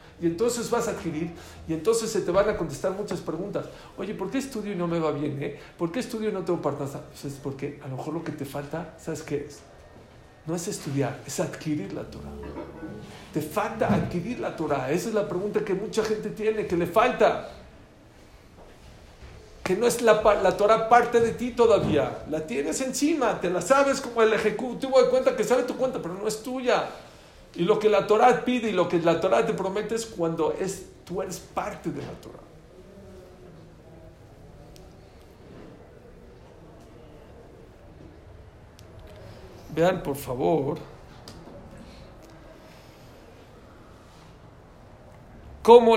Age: 50-69